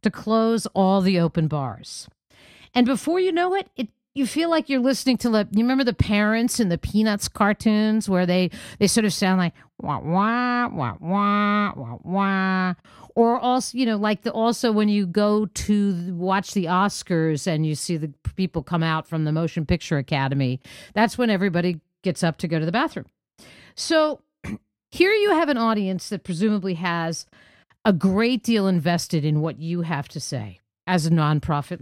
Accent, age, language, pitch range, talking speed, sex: American, 50-69, English, 170-240 Hz, 185 wpm, female